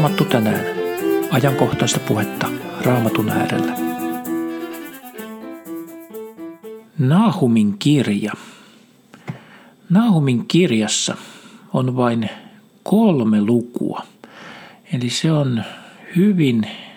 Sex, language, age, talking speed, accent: male, Finnish, 50-69, 65 wpm, native